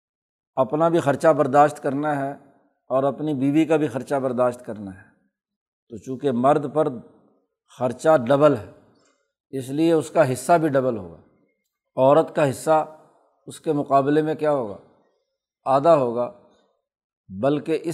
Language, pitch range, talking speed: Urdu, 130-155 Hz, 145 wpm